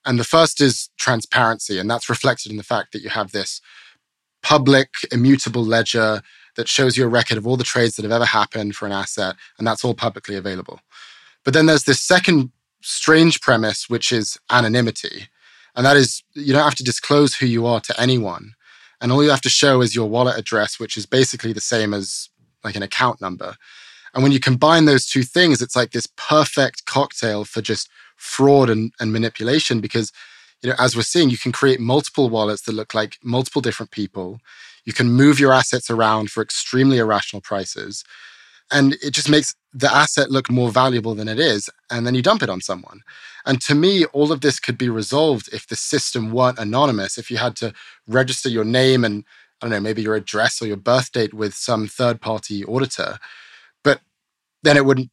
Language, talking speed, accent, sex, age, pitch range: English, 200 wpm, British, male, 20-39, 110-135 Hz